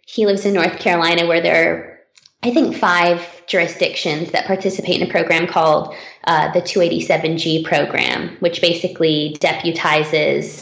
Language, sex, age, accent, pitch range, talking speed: English, female, 20-39, American, 170-195 Hz, 140 wpm